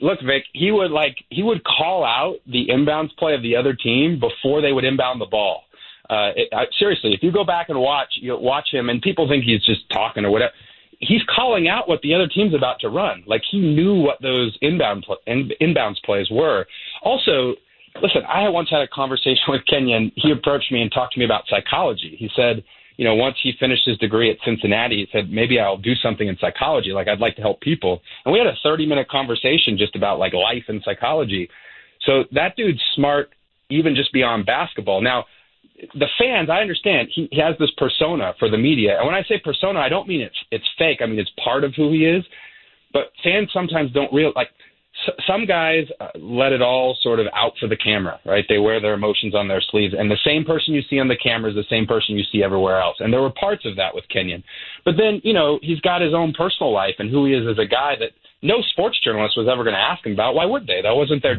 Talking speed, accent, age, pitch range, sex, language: 240 wpm, American, 30-49, 115-160 Hz, male, English